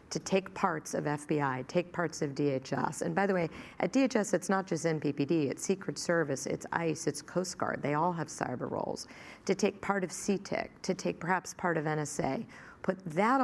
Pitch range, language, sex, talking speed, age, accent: 150-185 Hz, English, female, 200 wpm, 40-59, American